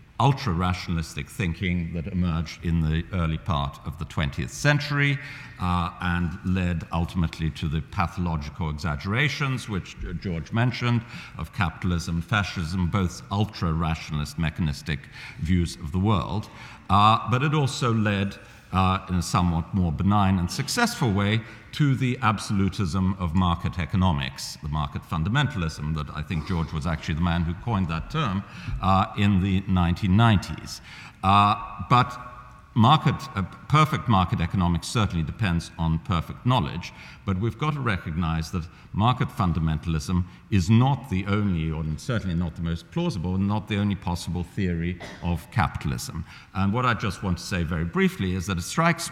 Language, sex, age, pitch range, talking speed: English, male, 50-69, 85-115 Hz, 145 wpm